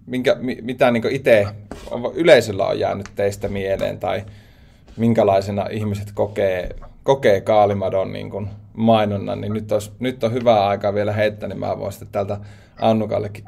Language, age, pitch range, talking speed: Finnish, 20-39, 100-115 Hz, 145 wpm